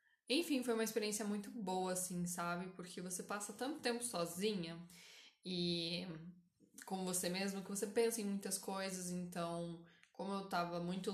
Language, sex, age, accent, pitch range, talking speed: Portuguese, female, 10-29, Brazilian, 170-200 Hz, 155 wpm